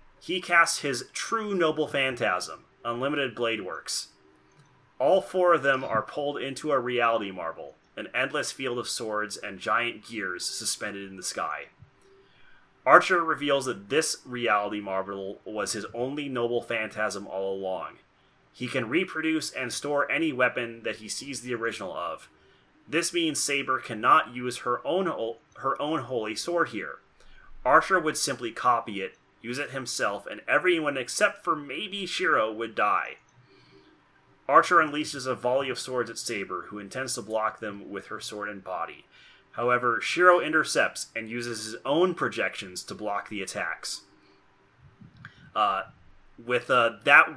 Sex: male